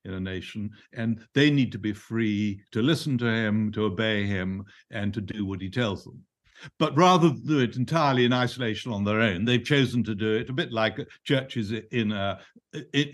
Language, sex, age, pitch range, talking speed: English, male, 60-79, 105-135 Hz, 210 wpm